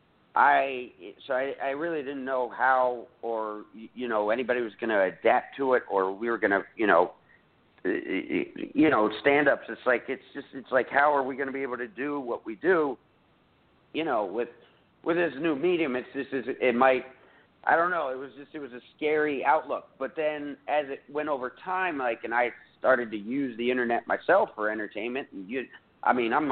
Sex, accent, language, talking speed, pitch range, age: male, American, English, 200 wpm, 115-145 Hz, 50-69